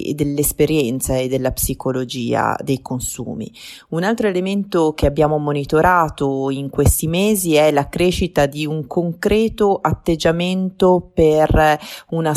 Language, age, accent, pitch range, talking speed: Italian, 30-49, native, 145-185 Hz, 115 wpm